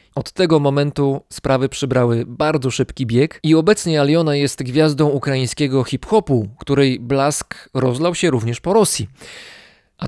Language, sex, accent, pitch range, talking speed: Polish, male, native, 120-155 Hz, 135 wpm